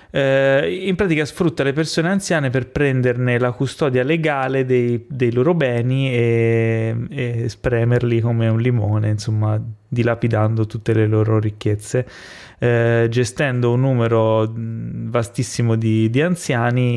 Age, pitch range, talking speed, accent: 20-39, 115-135 Hz, 120 wpm, native